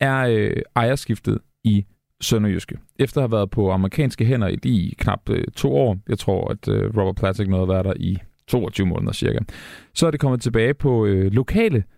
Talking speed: 200 wpm